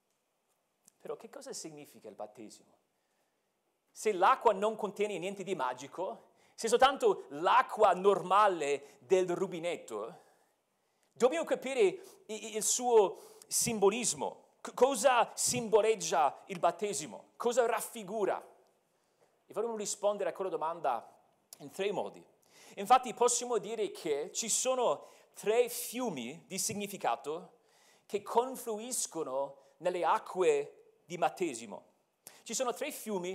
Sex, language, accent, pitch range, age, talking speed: male, Italian, native, 180-245 Hz, 40-59, 110 wpm